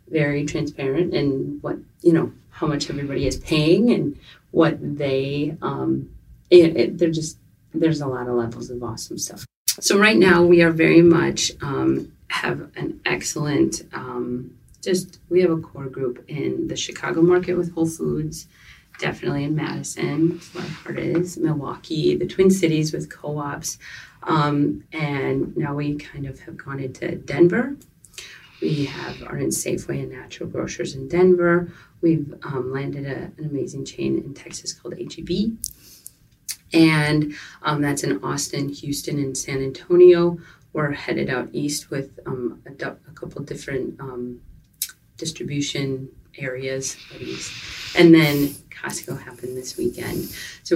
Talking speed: 145 wpm